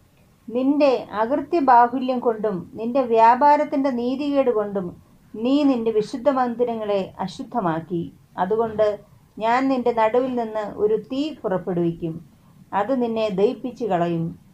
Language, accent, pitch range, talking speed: Malayalam, native, 195-245 Hz, 105 wpm